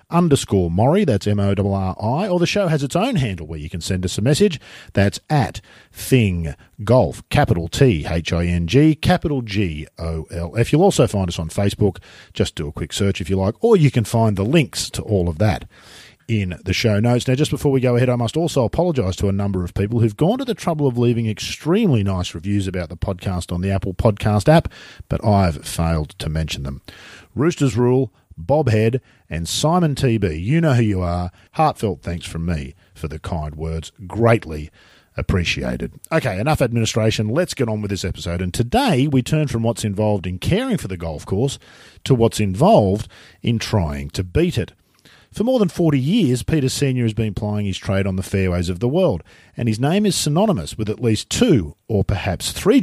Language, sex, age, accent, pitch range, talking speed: English, male, 40-59, Australian, 90-135 Hz, 210 wpm